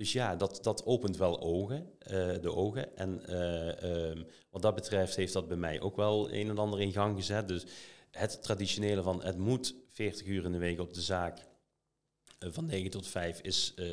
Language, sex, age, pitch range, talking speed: Dutch, male, 40-59, 90-105 Hz, 205 wpm